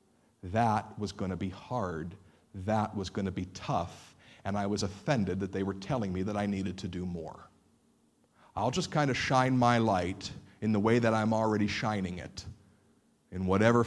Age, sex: 50-69, male